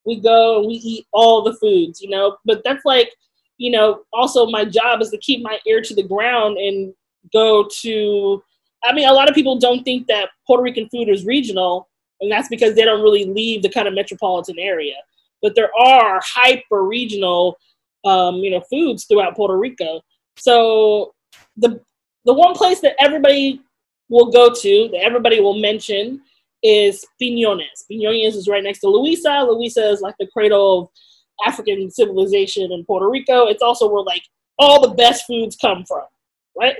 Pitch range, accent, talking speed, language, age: 205-275 Hz, American, 180 wpm, English, 20-39